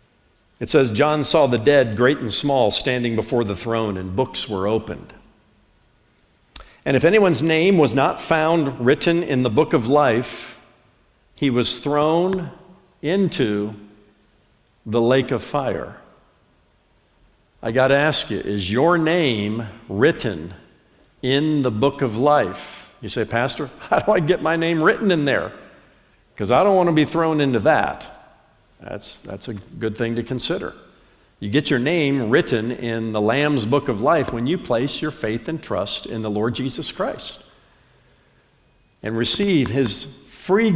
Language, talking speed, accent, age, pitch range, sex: English, 160 wpm, American, 50-69, 110-155 Hz, male